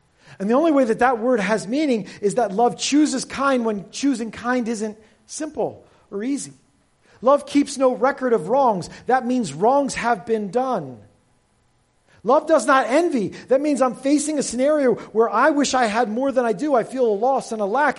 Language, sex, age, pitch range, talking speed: English, male, 40-59, 205-275 Hz, 195 wpm